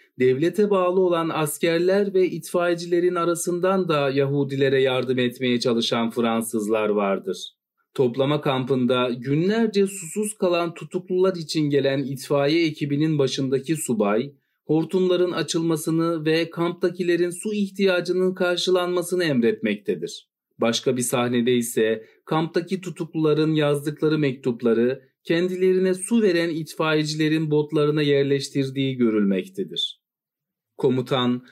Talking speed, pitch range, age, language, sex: 95 wpm, 135-180 Hz, 40-59, Turkish, male